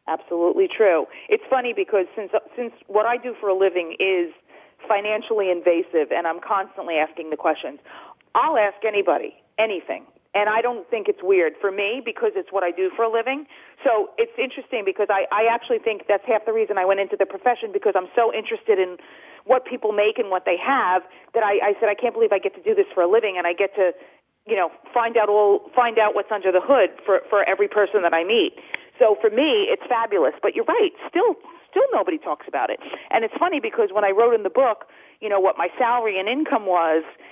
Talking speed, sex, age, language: 225 wpm, female, 40-59, English